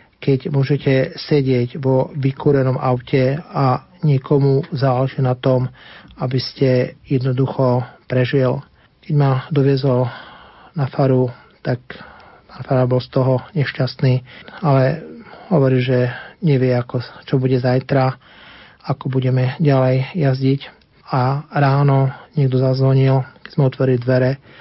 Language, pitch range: Slovak, 130-140 Hz